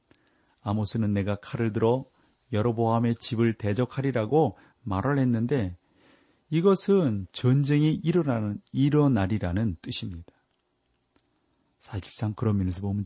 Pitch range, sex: 95-125 Hz, male